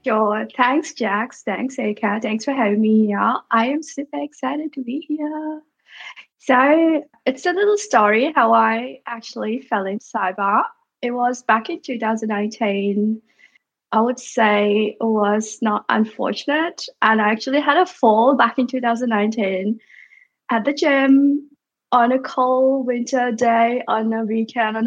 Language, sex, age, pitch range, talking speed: English, female, 10-29, 220-285 Hz, 145 wpm